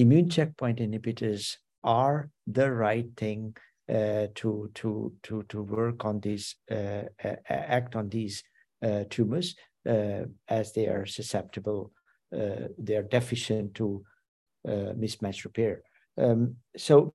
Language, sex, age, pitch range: English, male, 60-79, 105-125 Hz